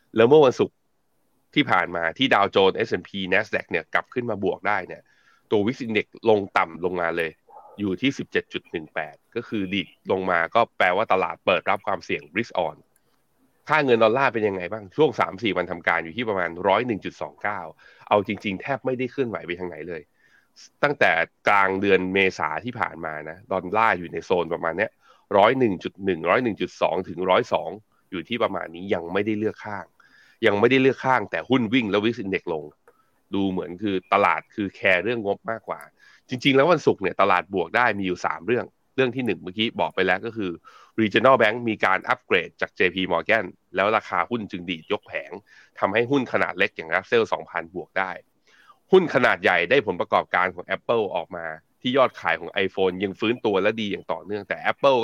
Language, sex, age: Thai, male, 20-39